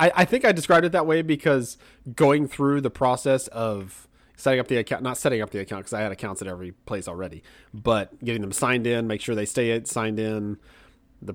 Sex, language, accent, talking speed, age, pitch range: male, English, American, 220 wpm, 30-49, 105-135 Hz